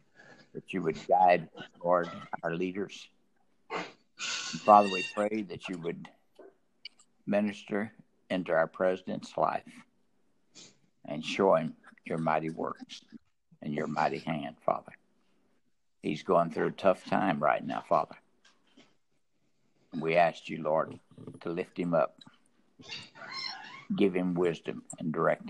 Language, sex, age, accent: English, male, 60-79, American